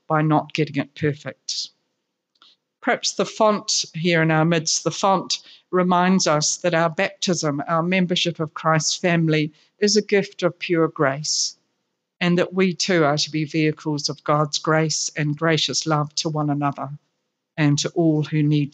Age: 50-69